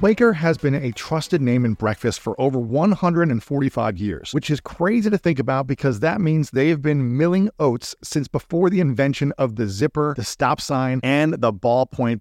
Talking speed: 190 wpm